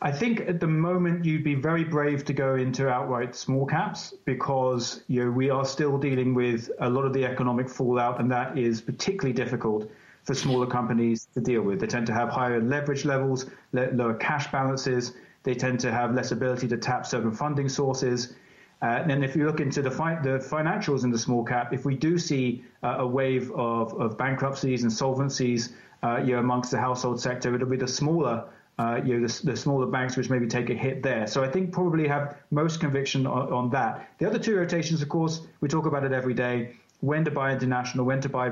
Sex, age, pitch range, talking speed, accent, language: male, 30-49, 125-145 Hz, 220 wpm, British, English